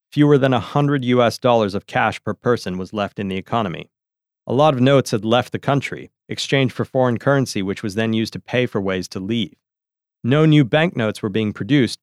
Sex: male